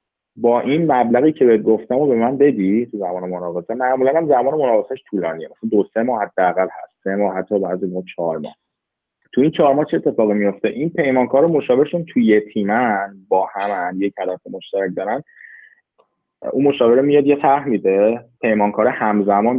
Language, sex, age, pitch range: Persian, male, 20-39, 95-120 Hz